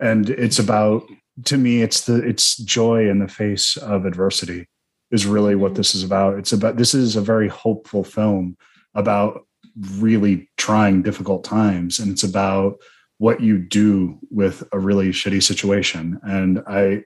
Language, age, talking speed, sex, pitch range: English, 30-49, 160 wpm, male, 95-105 Hz